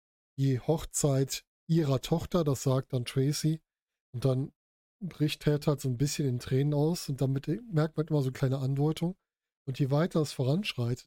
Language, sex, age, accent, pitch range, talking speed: German, male, 10-29, German, 135-165 Hz, 185 wpm